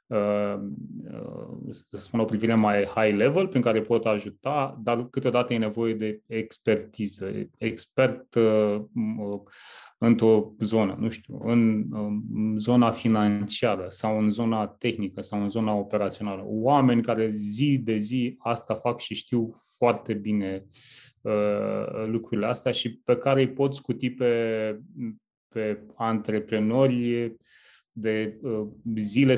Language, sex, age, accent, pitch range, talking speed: Romanian, male, 30-49, native, 105-125 Hz, 130 wpm